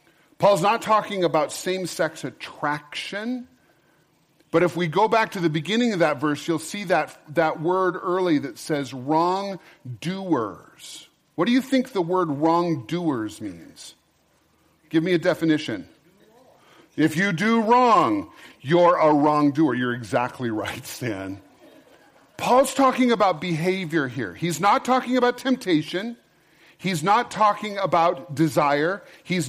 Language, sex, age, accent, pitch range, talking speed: English, male, 40-59, American, 145-190 Hz, 130 wpm